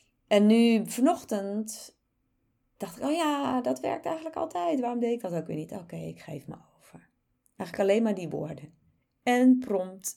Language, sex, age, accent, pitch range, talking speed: Dutch, female, 30-49, Dutch, 165-225 Hz, 175 wpm